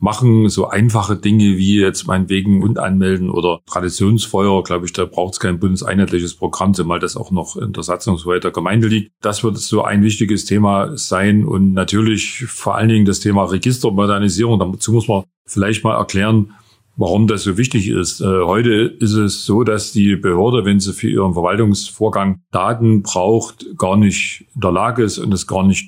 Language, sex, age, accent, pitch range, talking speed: German, male, 40-59, German, 95-110 Hz, 190 wpm